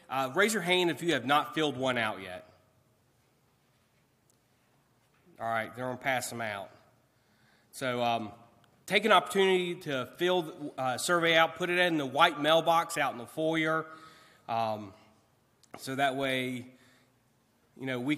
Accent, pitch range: American, 120-160 Hz